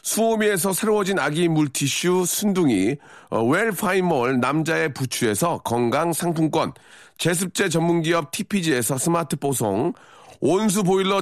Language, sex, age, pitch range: Korean, male, 40-59, 160-200 Hz